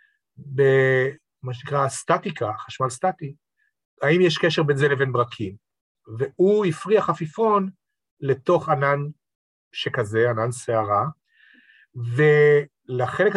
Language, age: Hebrew, 40-59